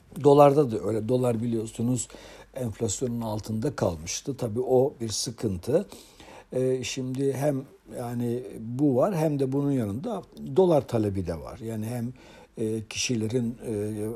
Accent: native